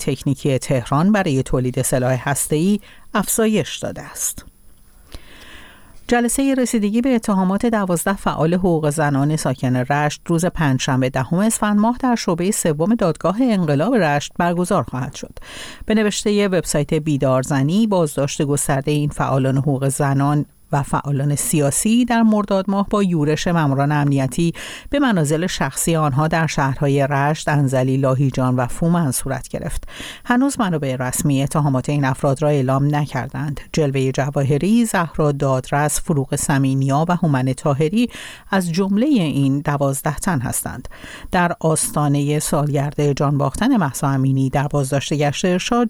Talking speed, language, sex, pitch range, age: 135 wpm, Persian, female, 135-180 Hz, 50-69